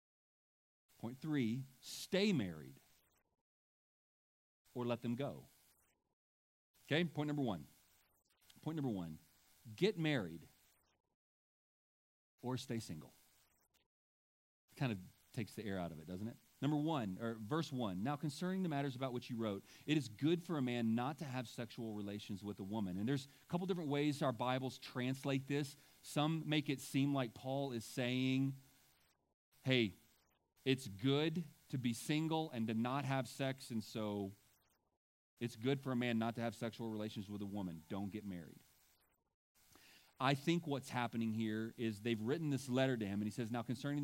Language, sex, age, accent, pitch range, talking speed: English, male, 40-59, American, 105-140 Hz, 165 wpm